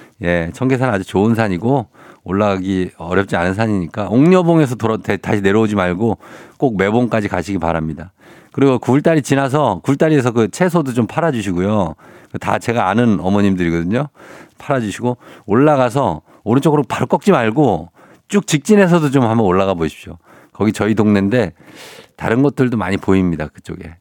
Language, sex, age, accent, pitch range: Korean, male, 50-69, native, 100-145 Hz